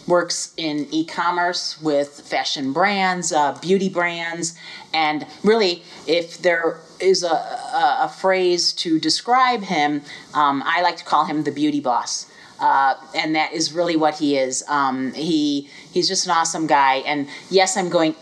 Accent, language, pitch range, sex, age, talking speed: American, English, 150-185 Hz, female, 40-59, 160 wpm